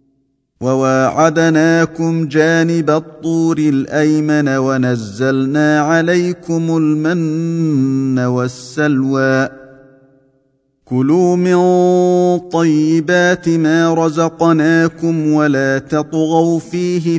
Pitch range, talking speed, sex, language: 135-165 Hz, 55 wpm, male, Arabic